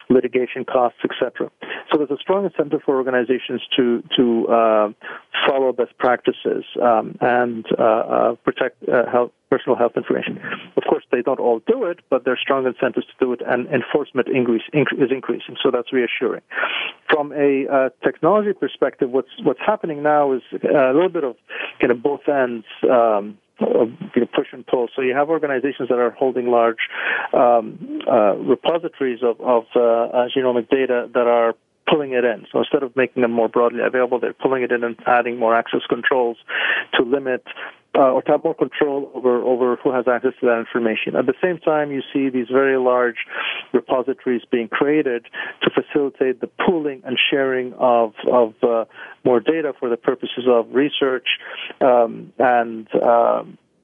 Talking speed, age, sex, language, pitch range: 175 wpm, 40-59, male, English, 120-140 Hz